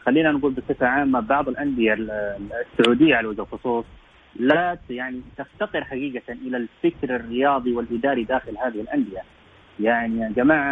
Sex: male